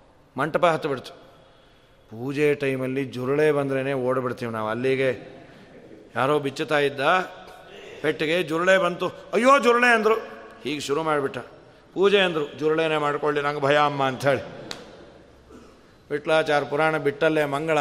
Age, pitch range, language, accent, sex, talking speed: 40-59, 135-175 Hz, Kannada, native, male, 110 wpm